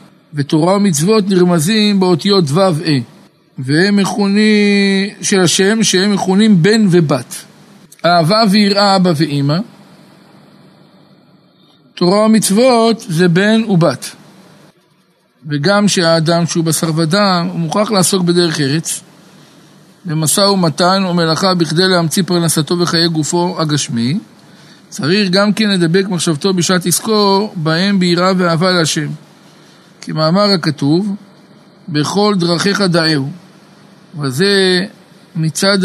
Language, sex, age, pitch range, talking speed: Hebrew, male, 50-69, 170-195 Hz, 100 wpm